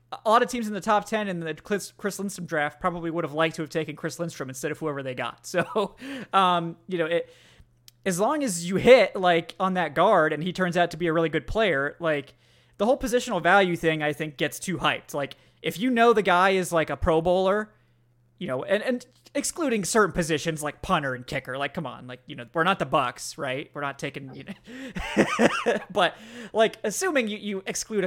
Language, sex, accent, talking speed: English, male, American, 225 wpm